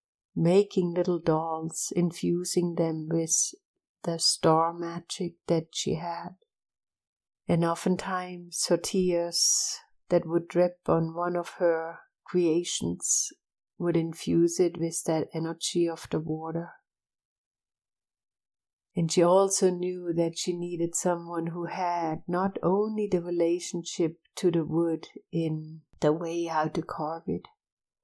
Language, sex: English, female